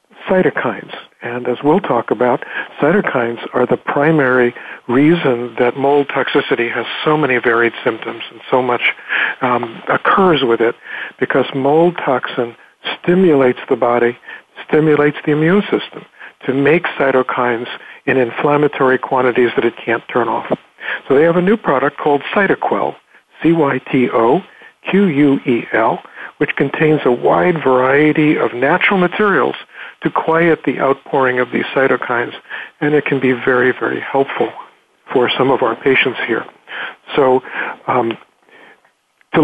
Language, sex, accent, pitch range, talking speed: English, male, American, 125-155 Hz, 145 wpm